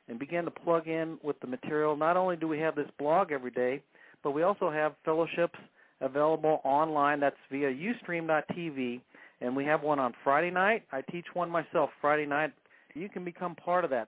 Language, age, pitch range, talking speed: English, 50-69, 135-165 Hz, 195 wpm